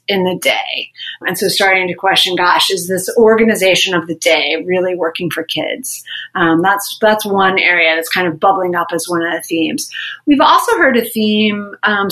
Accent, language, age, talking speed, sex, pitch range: American, English, 30-49, 200 wpm, female, 190-245 Hz